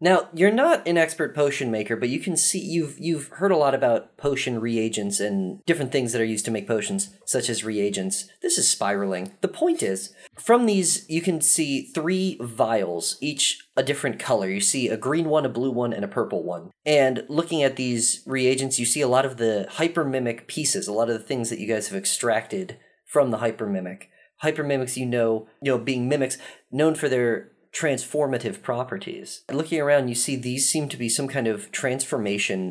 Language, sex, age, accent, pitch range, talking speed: English, male, 30-49, American, 115-155 Hz, 205 wpm